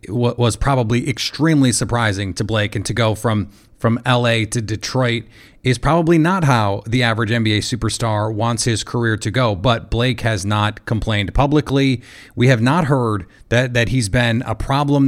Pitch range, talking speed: 110-135 Hz, 175 wpm